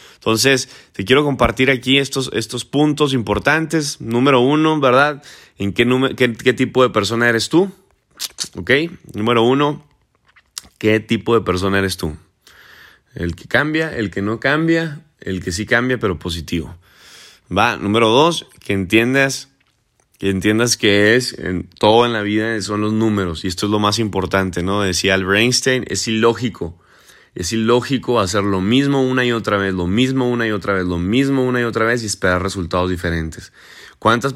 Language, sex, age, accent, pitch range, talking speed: Spanish, male, 20-39, Mexican, 100-130 Hz, 175 wpm